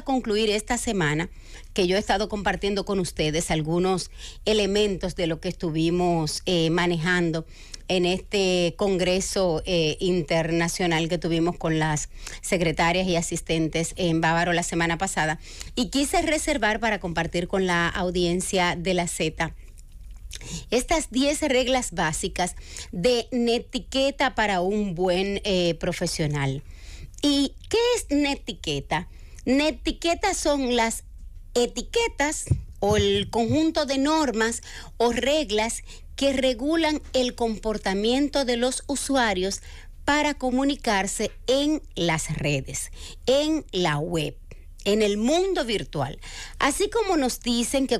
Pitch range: 170-250 Hz